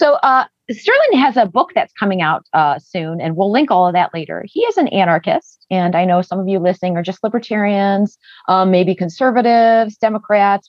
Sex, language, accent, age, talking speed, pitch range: female, English, American, 40-59, 200 wpm, 180-240 Hz